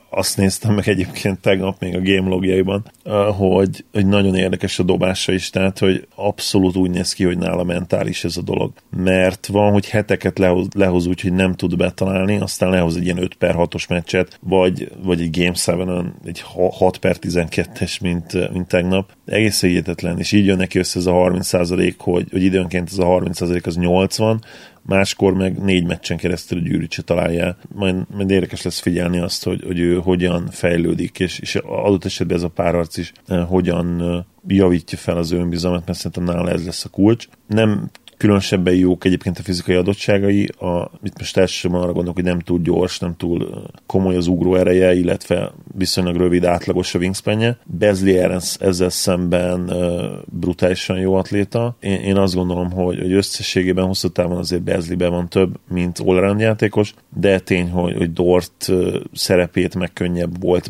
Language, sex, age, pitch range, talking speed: Hungarian, male, 30-49, 90-95 Hz, 175 wpm